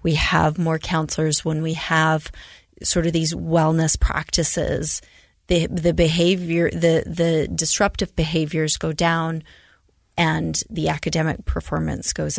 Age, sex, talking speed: 30-49, female, 125 wpm